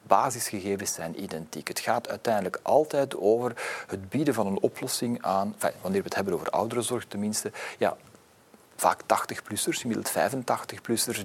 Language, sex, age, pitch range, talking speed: Dutch, male, 40-59, 105-120 Hz, 135 wpm